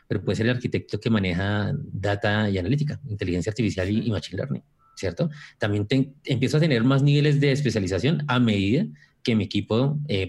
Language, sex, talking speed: Spanish, male, 185 wpm